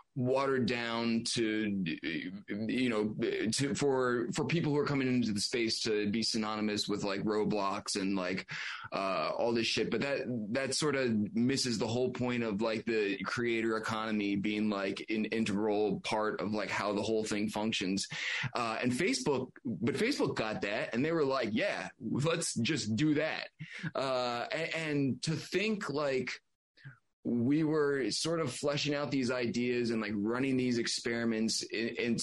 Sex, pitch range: male, 110-130 Hz